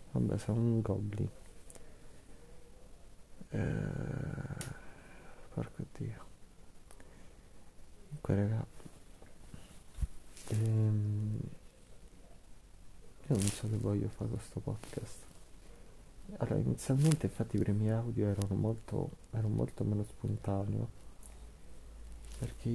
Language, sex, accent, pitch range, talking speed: Italian, male, native, 100-120 Hz, 80 wpm